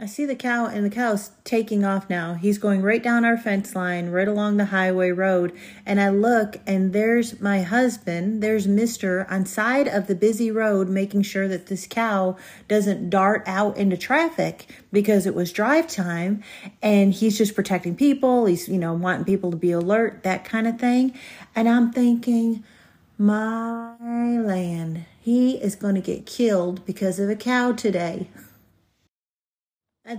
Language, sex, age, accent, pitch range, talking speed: English, female, 40-59, American, 190-235 Hz, 170 wpm